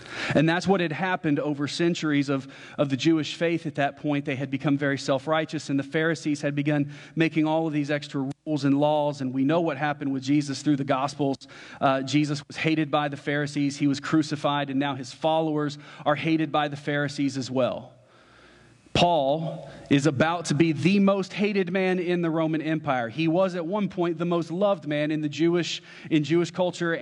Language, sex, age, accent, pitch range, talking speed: English, male, 40-59, American, 140-160 Hz, 205 wpm